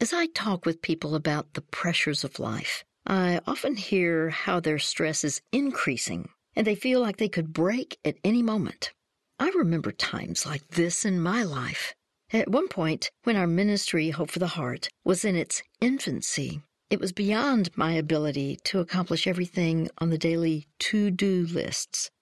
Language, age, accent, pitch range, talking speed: English, 60-79, American, 165-215 Hz, 170 wpm